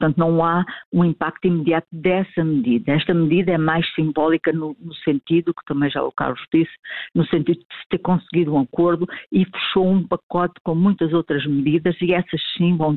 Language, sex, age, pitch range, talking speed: Portuguese, female, 50-69, 150-175 Hz, 195 wpm